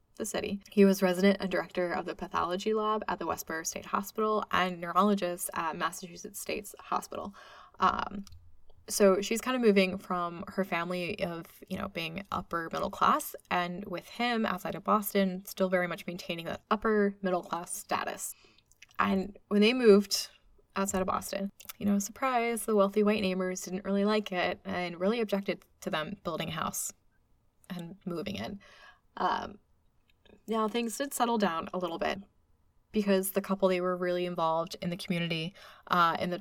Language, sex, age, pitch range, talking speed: English, female, 20-39, 180-210 Hz, 170 wpm